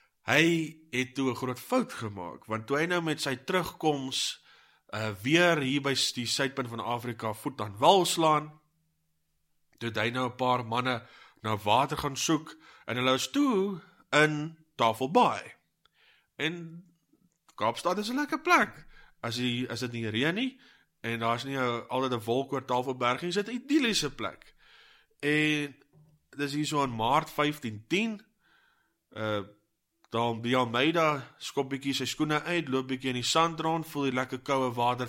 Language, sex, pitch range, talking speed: English, male, 120-155 Hz, 160 wpm